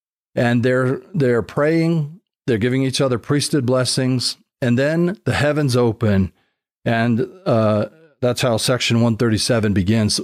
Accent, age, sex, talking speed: American, 40-59, male, 130 wpm